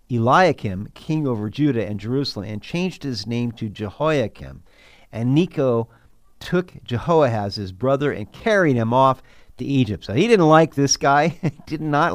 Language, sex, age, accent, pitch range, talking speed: English, male, 50-69, American, 120-165 Hz, 165 wpm